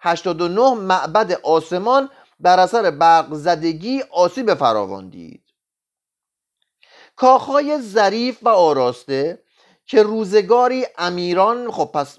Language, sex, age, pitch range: Persian, male, 30-49, 140-210 Hz